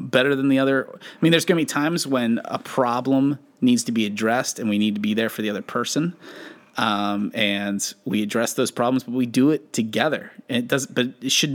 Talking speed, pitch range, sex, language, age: 230 wpm, 115-155 Hz, male, English, 30-49